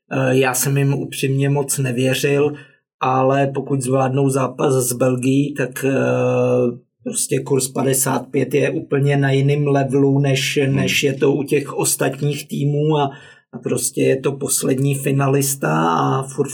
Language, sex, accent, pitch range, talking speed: Czech, male, native, 135-145 Hz, 140 wpm